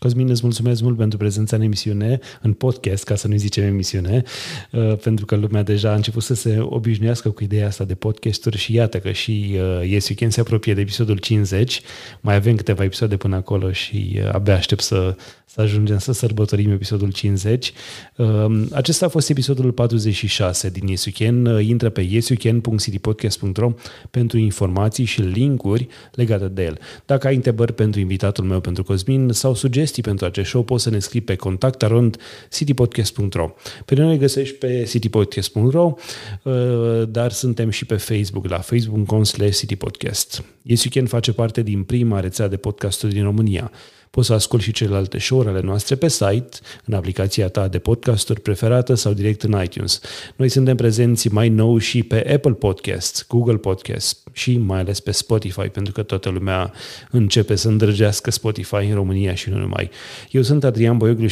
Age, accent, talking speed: 30-49, native, 165 wpm